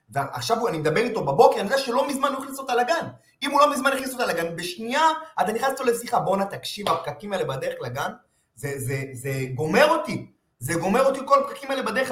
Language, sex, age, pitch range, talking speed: Hebrew, male, 30-49, 155-260 Hz, 205 wpm